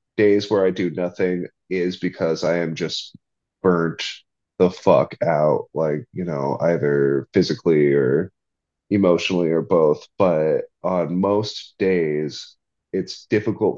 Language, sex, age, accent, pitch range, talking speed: English, male, 30-49, American, 90-120 Hz, 125 wpm